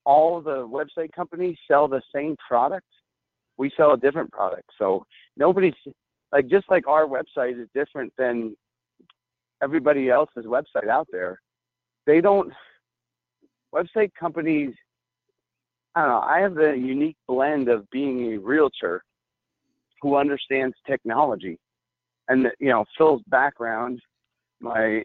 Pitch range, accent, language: 125-155 Hz, American, English